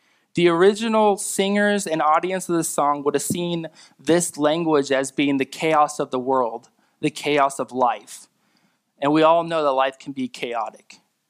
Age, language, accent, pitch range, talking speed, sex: 20-39, English, American, 135-170 Hz, 175 wpm, male